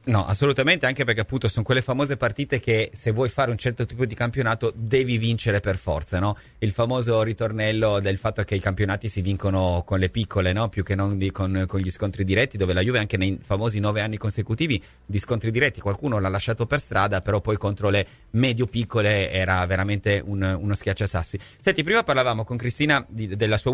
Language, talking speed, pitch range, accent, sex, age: Italian, 205 wpm, 105-130 Hz, native, male, 30-49